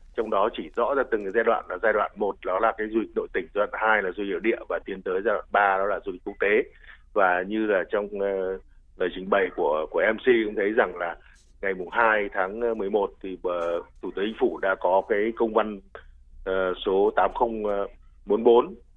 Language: Vietnamese